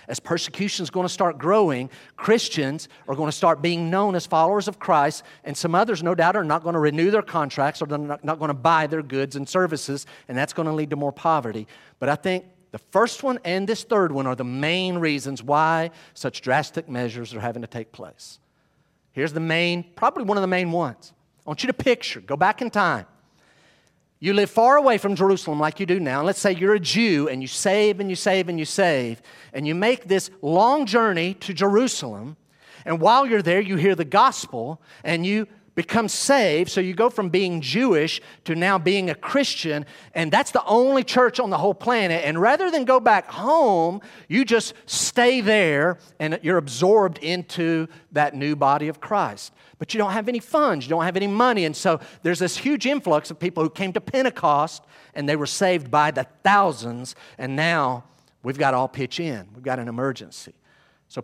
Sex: male